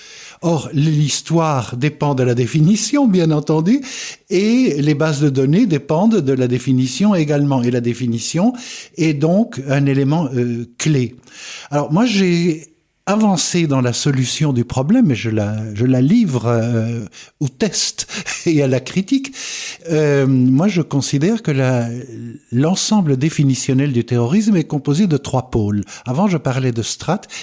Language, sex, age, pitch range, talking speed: French, male, 60-79, 120-160 Hz, 150 wpm